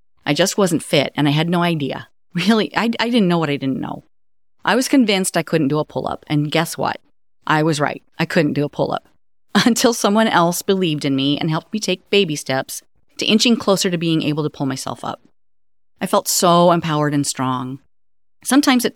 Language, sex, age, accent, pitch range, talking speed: English, female, 40-59, American, 145-210 Hz, 210 wpm